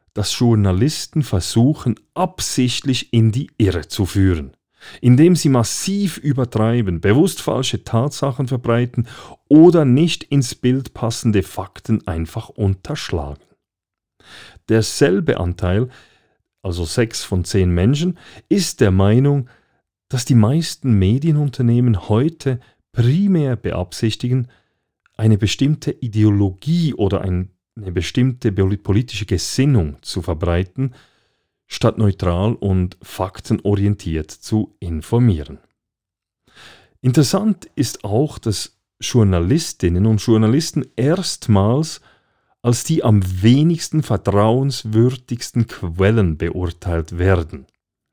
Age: 40-59